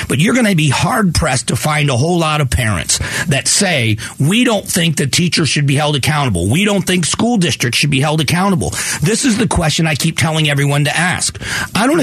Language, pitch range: English, 130-180 Hz